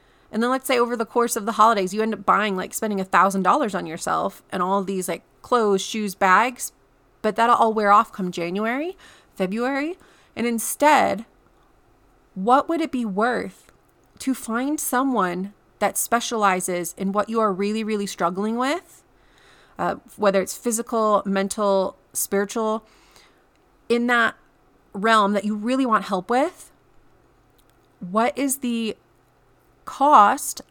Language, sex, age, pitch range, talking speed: English, female, 30-49, 200-240 Hz, 145 wpm